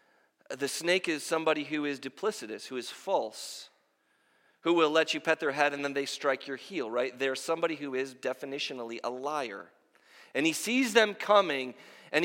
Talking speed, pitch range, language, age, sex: 180 wpm, 145-220 Hz, English, 40-59, male